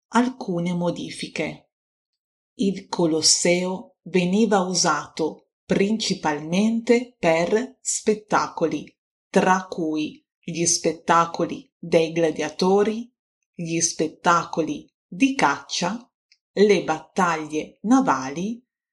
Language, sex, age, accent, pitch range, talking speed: Italian, female, 30-49, native, 165-245 Hz, 70 wpm